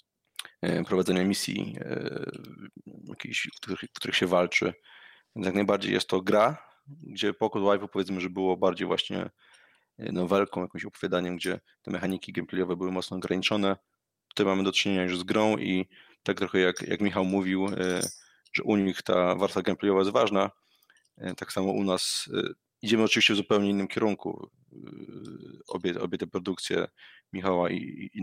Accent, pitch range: native, 90-100 Hz